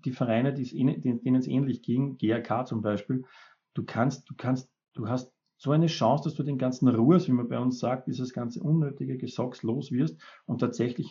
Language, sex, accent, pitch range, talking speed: German, male, Austrian, 120-145 Hz, 195 wpm